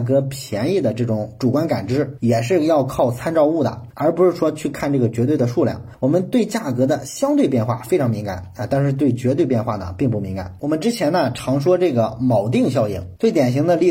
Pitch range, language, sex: 115-145 Hz, Chinese, male